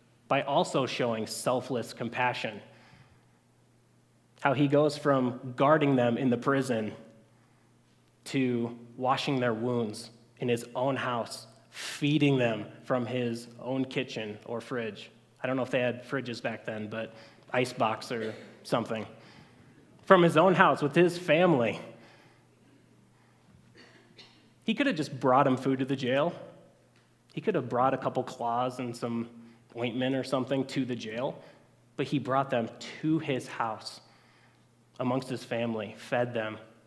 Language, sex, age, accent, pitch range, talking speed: English, male, 20-39, American, 115-130 Hz, 140 wpm